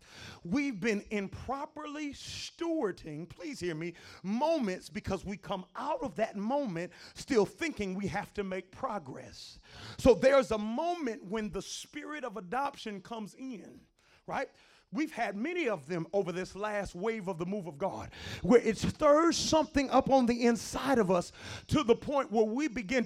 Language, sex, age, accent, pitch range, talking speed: English, male, 40-59, American, 210-295 Hz, 165 wpm